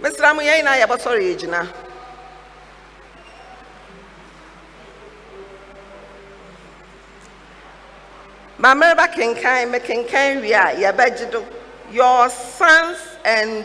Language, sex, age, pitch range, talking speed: English, female, 50-69, 200-285 Hz, 85 wpm